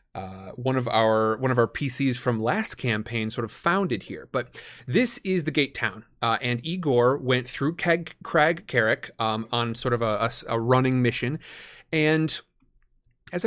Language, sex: English, male